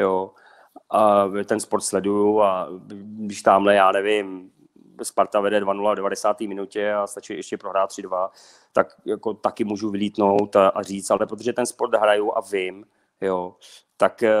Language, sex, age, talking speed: Czech, male, 30-49, 155 wpm